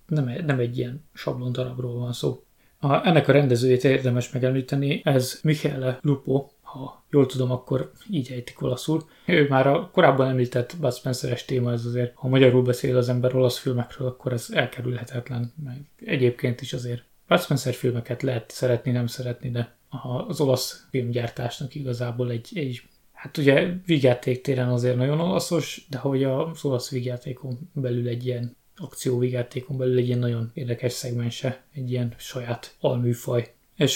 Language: Hungarian